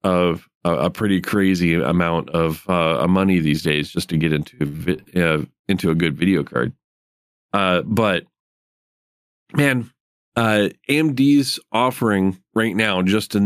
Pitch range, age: 90-105 Hz, 40-59